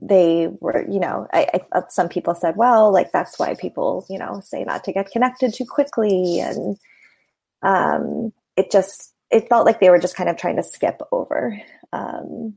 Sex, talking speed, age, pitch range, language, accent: female, 190 wpm, 20-39, 180-220 Hz, English, American